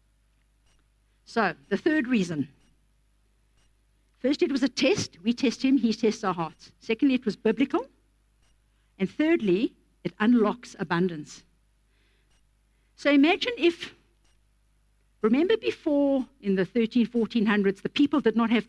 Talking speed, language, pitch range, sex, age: 125 wpm, English, 165-235 Hz, female, 50-69